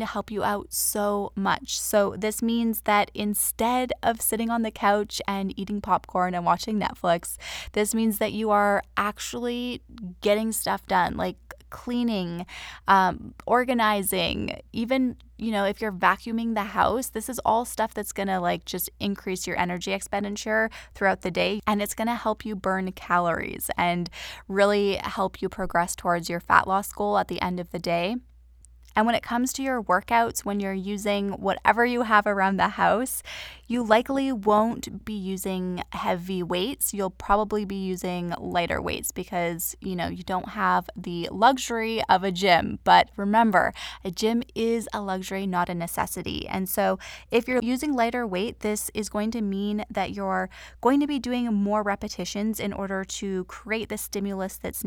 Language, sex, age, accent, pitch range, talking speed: English, female, 10-29, American, 185-225 Hz, 175 wpm